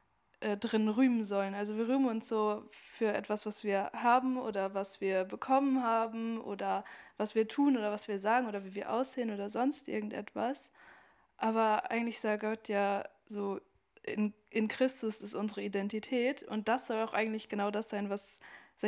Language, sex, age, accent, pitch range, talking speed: German, female, 20-39, German, 205-230 Hz, 175 wpm